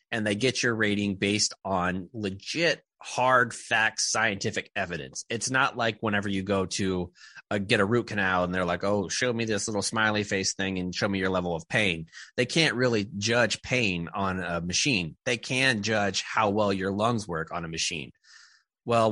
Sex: male